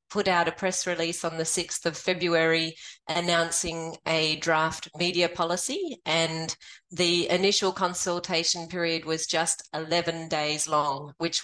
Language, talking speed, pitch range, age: English, 135 wpm, 160-180 Hz, 30-49